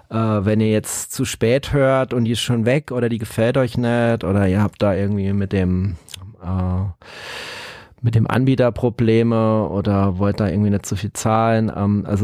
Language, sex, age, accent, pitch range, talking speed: German, male, 30-49, German, 100-125 Hz, 190 wpm